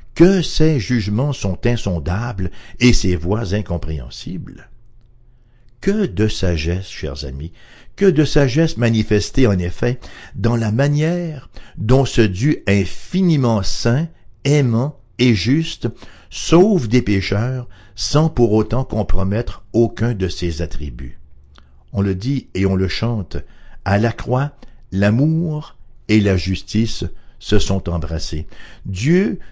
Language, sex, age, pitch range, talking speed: English, male, 60-79, 95-125 Hz, 120 wpm